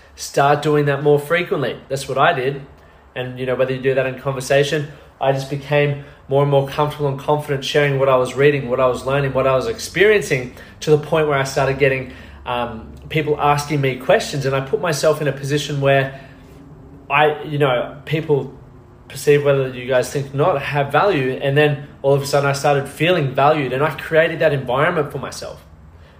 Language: English